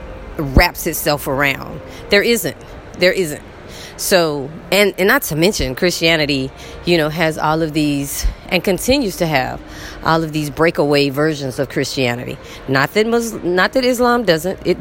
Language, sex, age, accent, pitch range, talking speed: English, female, 30-49, American, 135-195 Hz, 160 wpm